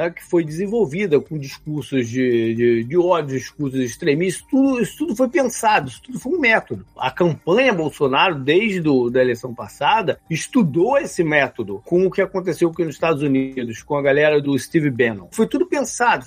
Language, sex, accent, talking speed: Portuguese, male, Brazilian, 175 wpm